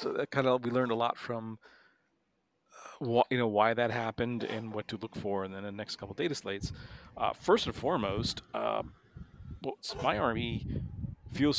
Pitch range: 105-120 Hz